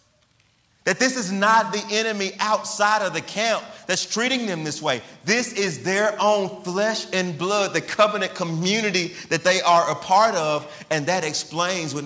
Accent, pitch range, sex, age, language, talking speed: American, 120-185 Hz, male, 40-59, English, 175 wpm